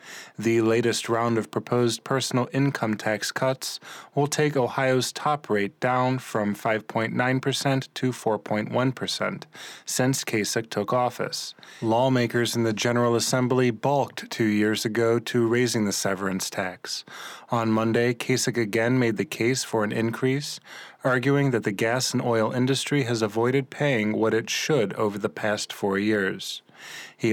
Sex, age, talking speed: male, 20-39, 145 wpm